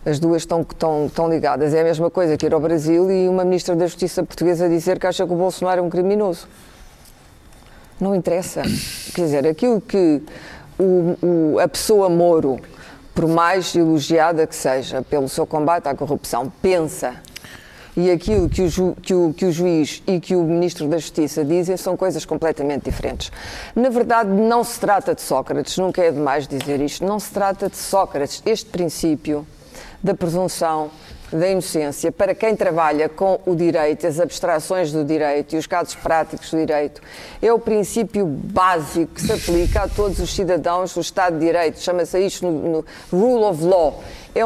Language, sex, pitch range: Portuguese, female, 160-190 Hz